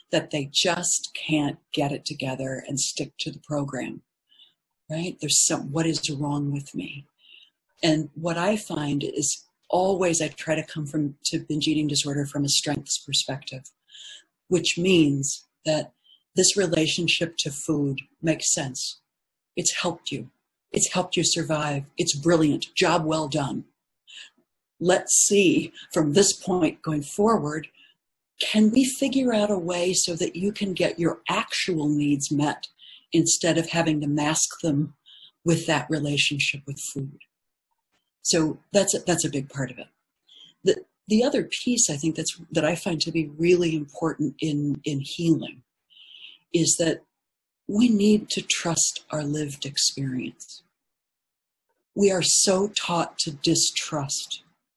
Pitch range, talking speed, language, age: 145-175 Hz, 145 wpm, English, 50-69